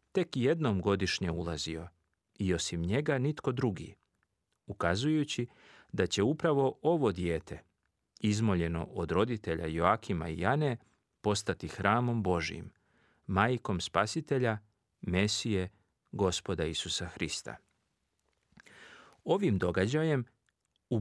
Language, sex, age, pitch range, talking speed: Croatian, male, 40-59, 90-120 Hz, 95 wpm